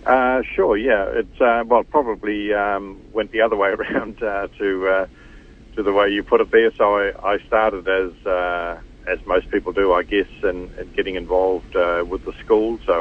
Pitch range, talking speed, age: 85-100 Hz, 210 wpm, 50-69